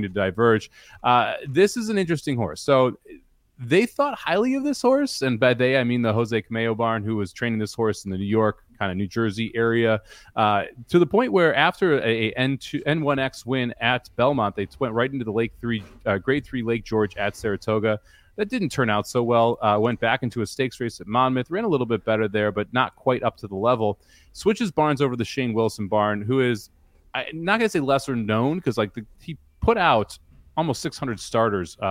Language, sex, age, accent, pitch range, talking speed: English, male, 30-49, American, 110-140 Hz, 225 wpm